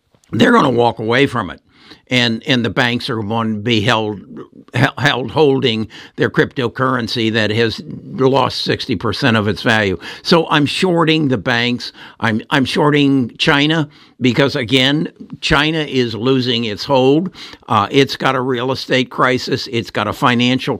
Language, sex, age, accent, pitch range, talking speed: English, male, 60-79, American, 115-135 Hz, 160 wpm